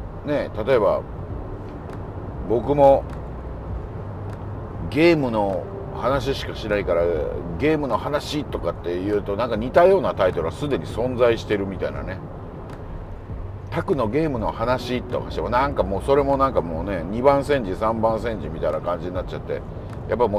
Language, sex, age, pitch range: Japanese, male, 50-69, 90-125 Hz